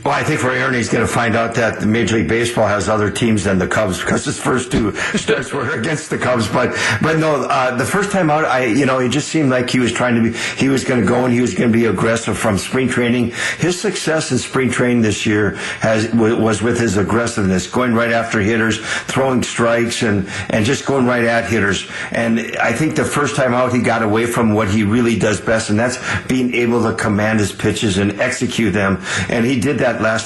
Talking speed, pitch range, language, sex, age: 240 wpm, 110-125 Hz, English, male, 50-69